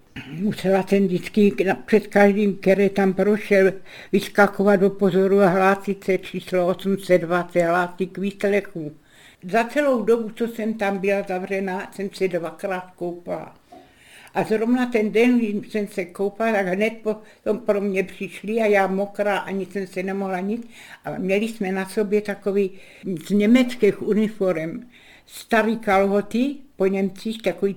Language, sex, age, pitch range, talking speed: Czech, female, 60-79, 190-215 Hz, 145 wpm